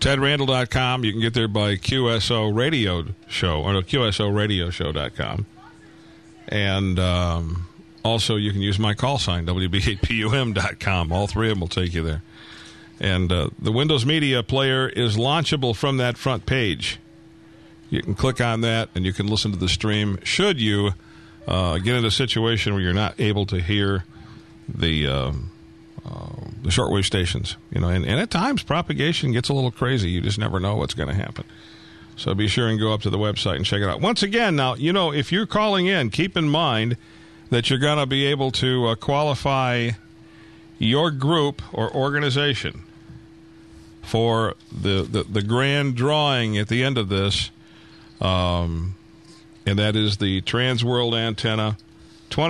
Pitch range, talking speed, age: 100-140 Hz, 170 wpm, 50-69